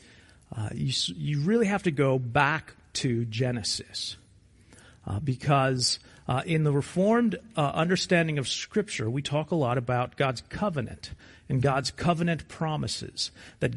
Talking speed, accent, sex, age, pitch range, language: 140 wpm, American, male, 40-59, 130-185 Hz, English